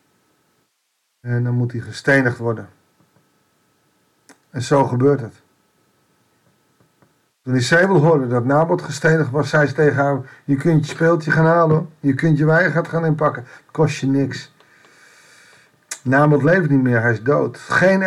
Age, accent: 50-69, Dutch